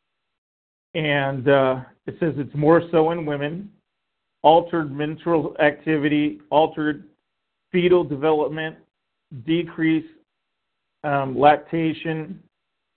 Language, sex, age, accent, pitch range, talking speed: English, male, 50-69, American, 140-165 Hz, 80 wpm